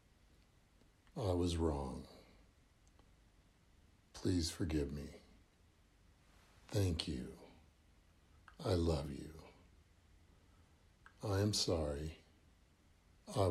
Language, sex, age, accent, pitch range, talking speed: English, male, 60-79, American, 80-95 Hz, 65 wpm